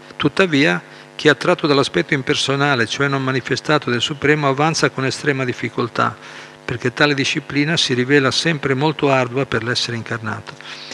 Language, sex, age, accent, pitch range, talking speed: Italian, male, 50-69, native, 120-150 Hz, 145 wpm